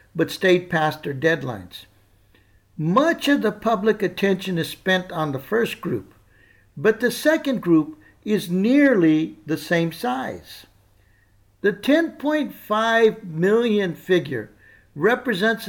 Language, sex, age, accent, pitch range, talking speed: English, male, 60-79, American, 160-225 Hz, 115 wpm